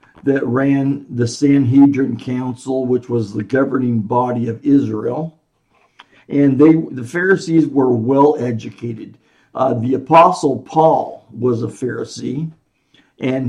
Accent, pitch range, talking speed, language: American, 125-155 Hz, 115 wpm, English